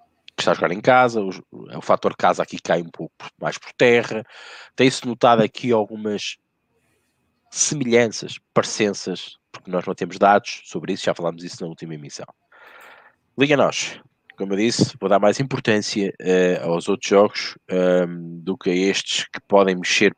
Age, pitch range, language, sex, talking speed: 20-39, 90-110 Hz, Portuguese, male, 155 wpm